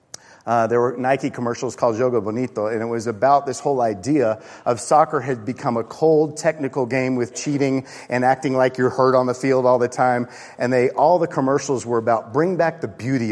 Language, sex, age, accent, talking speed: English, male, 40-59, American, 210 wpm